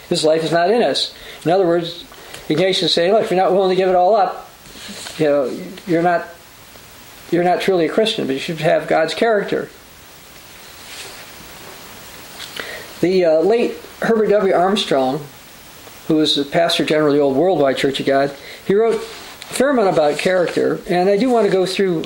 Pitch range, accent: 145-190 Hz, American